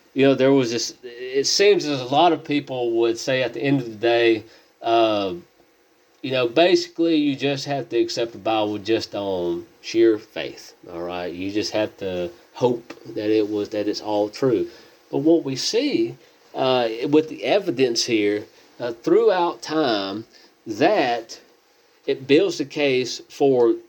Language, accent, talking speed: English, American, 170 wpm